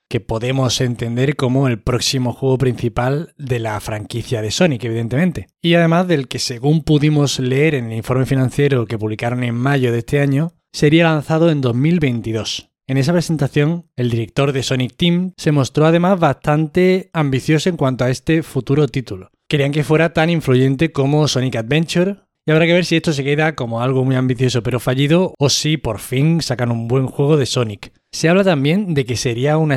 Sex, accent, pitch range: male, Spanish, 125-160 Hz